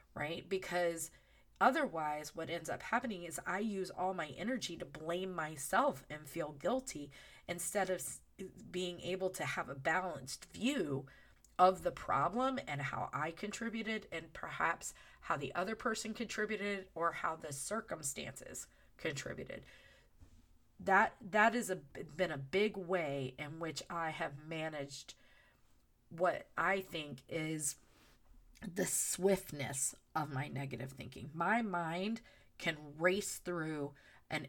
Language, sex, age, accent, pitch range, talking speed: English, female, 30-49, American, 145-190 Hz, 130 wpm